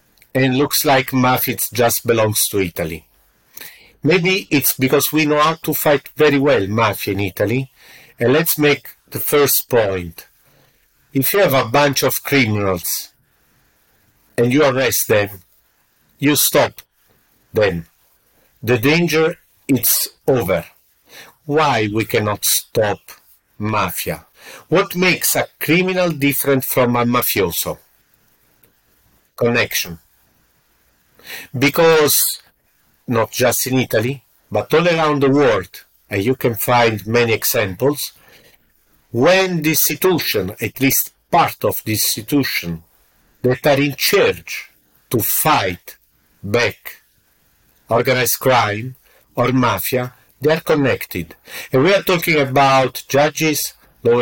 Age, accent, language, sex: 50-69, Italian, English, male